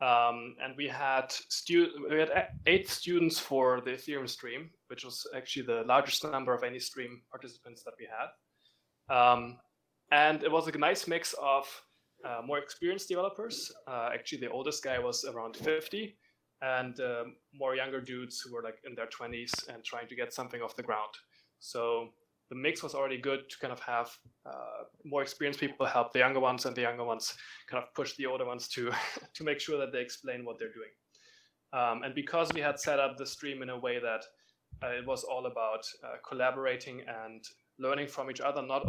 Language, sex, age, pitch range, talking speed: English, male, 20-39, 120-150 Hz, 200 wpm